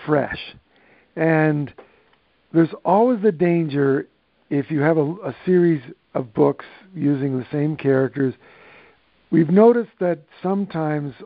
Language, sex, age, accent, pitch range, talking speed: English, male, 60-79, American, 140-175 Hz, 115 wpm